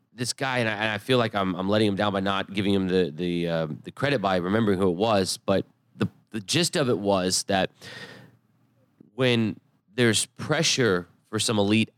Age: 30-49